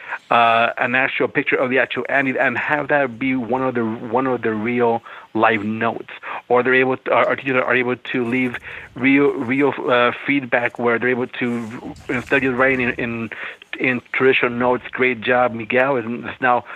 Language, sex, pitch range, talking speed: English, male, 120-130 Hz, 185 wpm